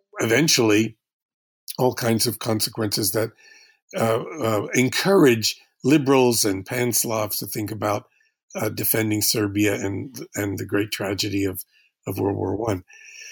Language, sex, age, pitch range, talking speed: English, male, 50-69, 110-140 Hz, 125 wpm